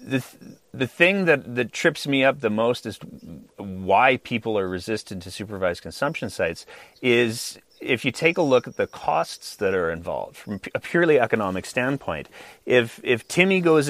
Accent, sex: American, male